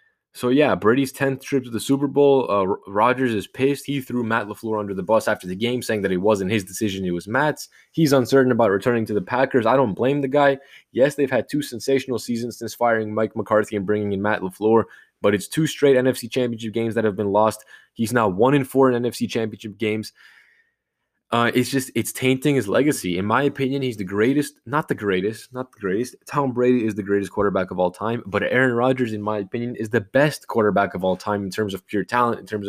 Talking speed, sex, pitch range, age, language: 235 wpm, male, 105-130 Hz, 20-39, English